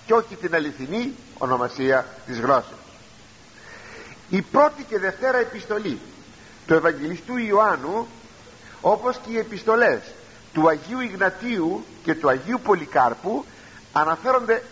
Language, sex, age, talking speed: Greek, male, 50-69, 105 wpm